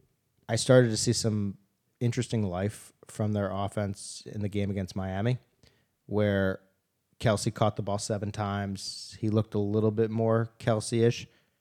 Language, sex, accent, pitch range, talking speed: English, male, American, 100-120 Hz, 150 wpm